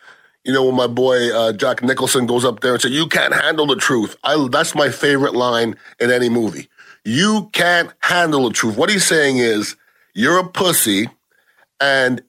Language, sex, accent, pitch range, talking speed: English, male, American, 130-175 Hz, 185 wpm